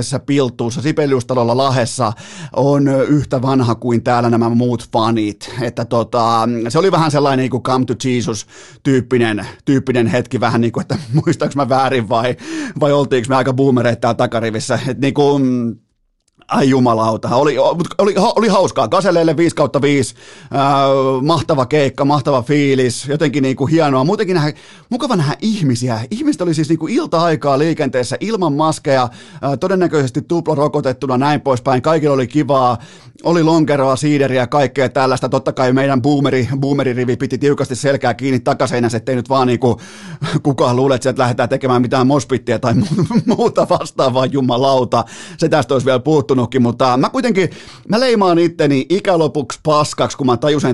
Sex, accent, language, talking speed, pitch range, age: male, native, Finnish, 150 wpm, 125-150 Hz, 30-49